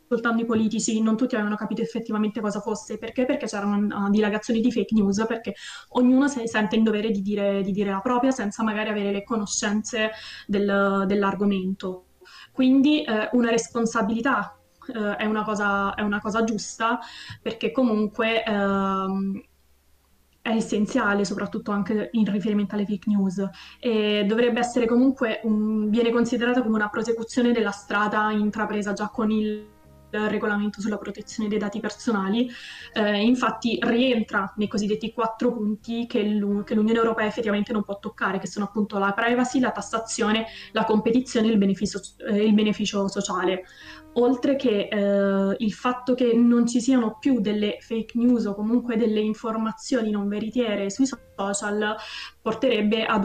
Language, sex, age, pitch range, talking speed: Italian, female, 20-39, 205-235 Hz, 150 wpm